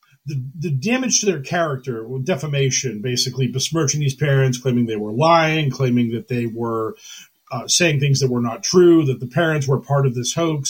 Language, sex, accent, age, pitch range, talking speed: English, male, American, 40-59, 130-165 Hz, 195 wpm